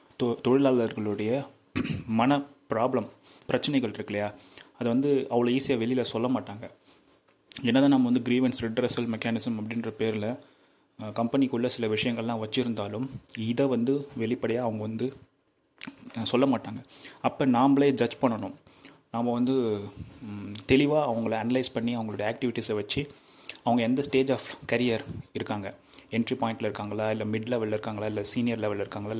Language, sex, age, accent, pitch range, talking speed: Tamil, male, 30-49, native, 110-130 Hz, 125 wpm